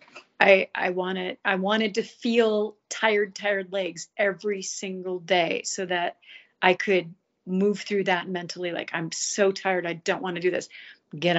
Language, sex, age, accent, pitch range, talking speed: English, female, 40-59, American, 185-235 Hz, 170 wpm